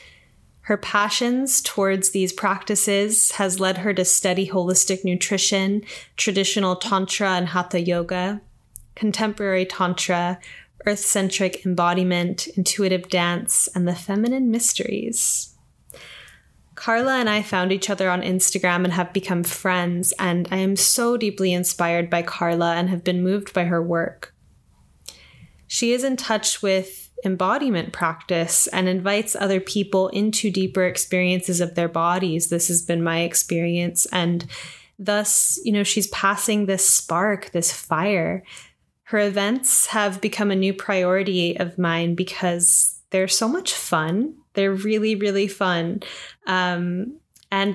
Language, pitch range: English, 180-205 Hz